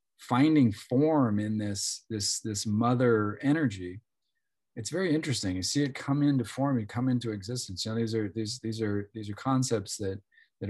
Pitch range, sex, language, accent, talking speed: 95-120 Hz, male, English, American, 185 wpm